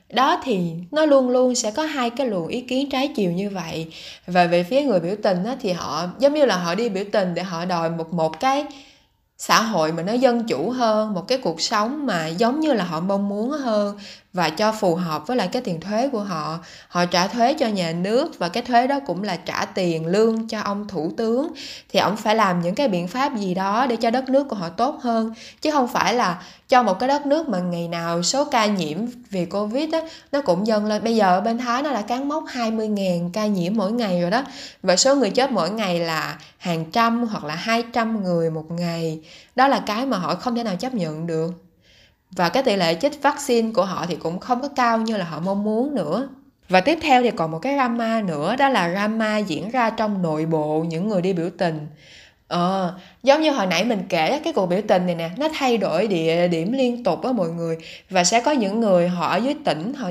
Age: 20-39